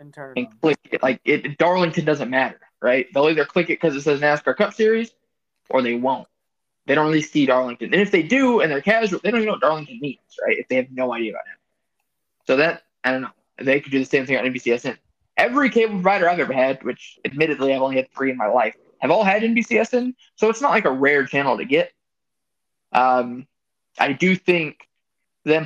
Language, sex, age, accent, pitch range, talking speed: English, male, 20-39, American, 135-195 Hz, 220 wpm